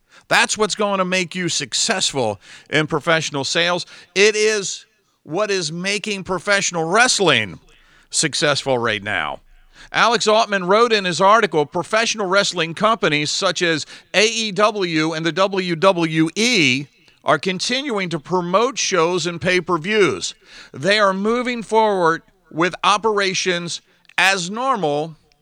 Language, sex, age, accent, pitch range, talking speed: English, male, 50-69, American, 150-210 Hz, 120 wpm